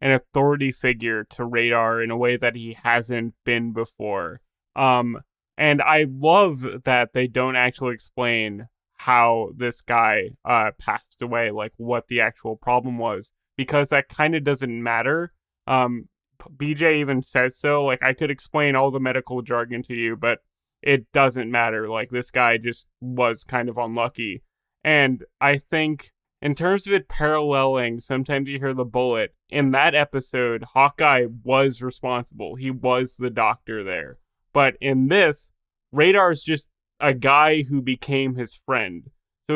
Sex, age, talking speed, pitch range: male, 20-39, 155 wpm, 120-145 Hz